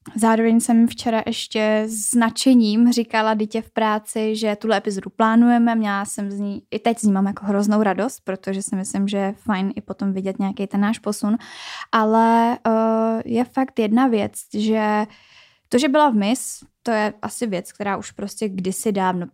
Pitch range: 205-235 Hz